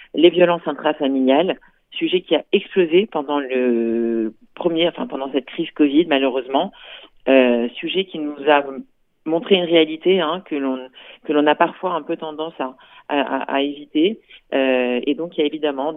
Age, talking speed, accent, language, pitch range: 40-59, 170 wpm, French, Italian, 135-175 Hz